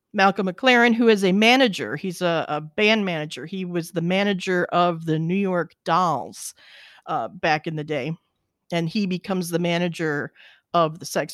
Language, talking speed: English, 175 wpm